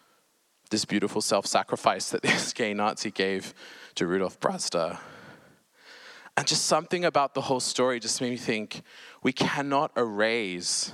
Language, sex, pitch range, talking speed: English, male, 105-130 Hz, 135 wpm